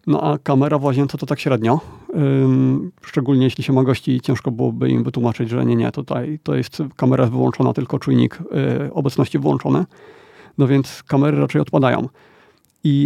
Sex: male